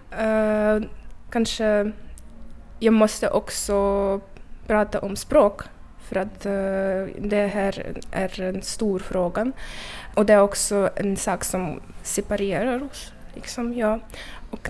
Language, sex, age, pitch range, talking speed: Swedish, female, 20-39, 200-225 Hz, 120 wpm